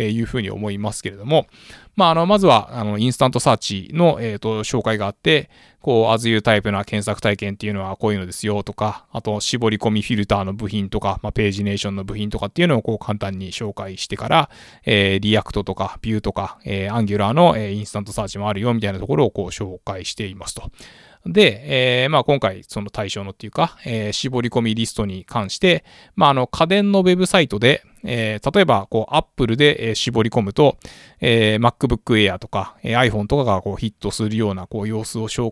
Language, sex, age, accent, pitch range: Japanese, male, 20-39, native, 100-130 Hz